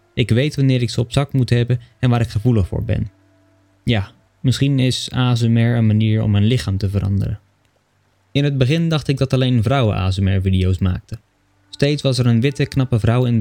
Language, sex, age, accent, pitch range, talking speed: Dutch, male, 20-39, Dutch, 100-125 Hz, 200 wpm